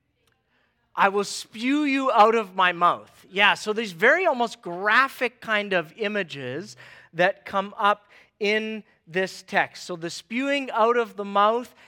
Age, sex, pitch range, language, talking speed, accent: 40-59, male, 155-215 Hz, English, 150 wpm, American